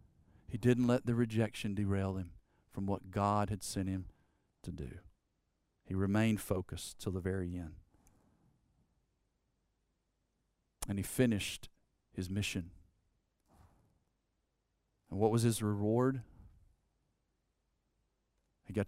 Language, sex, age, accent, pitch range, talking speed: English, male, 50-69, American, 95-115 Hz, 110 wpm